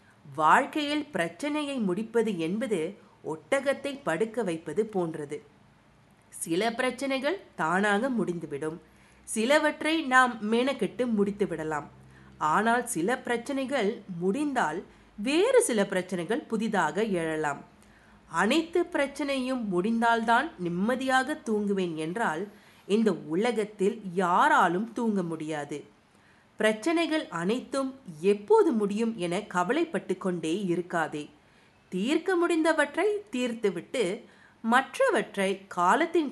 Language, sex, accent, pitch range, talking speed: English, female, Indian, 170-255 Hz, 85 wpm